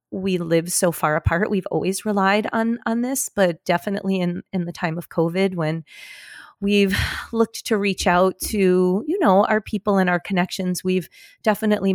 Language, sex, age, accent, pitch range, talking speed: English, female, 30-49, American, 190-240 Hz, 175 wpm